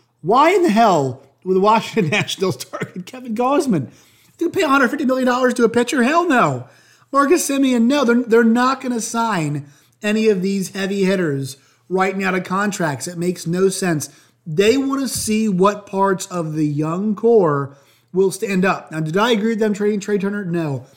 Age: 30-49